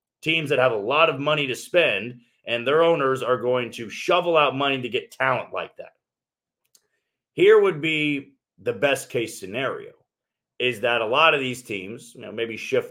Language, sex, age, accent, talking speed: English, male, 30-49, American, 190 wpm